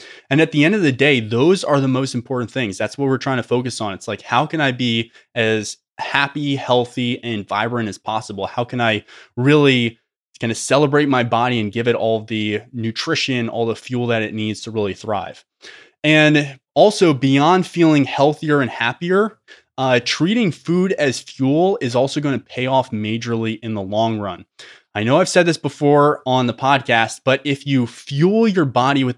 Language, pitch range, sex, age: English, 115-145 Hz, male, 20-39